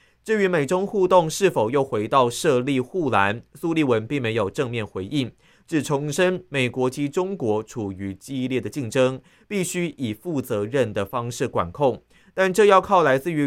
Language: Chinese